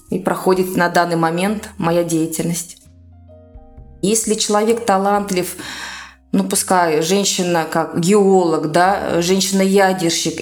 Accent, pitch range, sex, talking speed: native, 175-225 Hz, female, 100 wpm